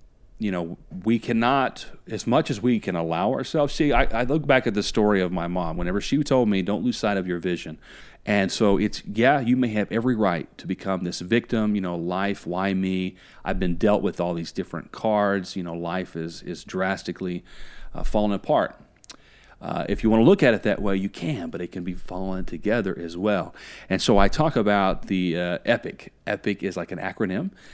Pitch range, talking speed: 90-110 Hz, 215 wpm